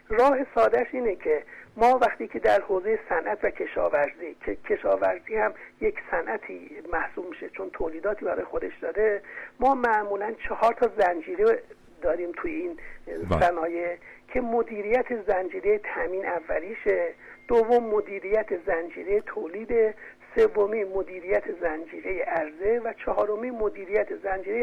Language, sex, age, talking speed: Persian, male, 60-79, 120 wpm